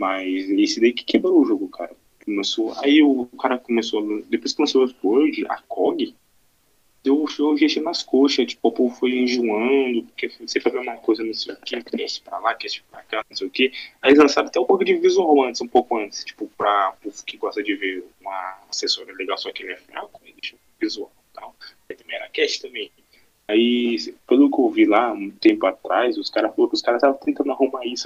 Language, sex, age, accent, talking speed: Portuguese, male, 20-39, Brazilian, 235 wpm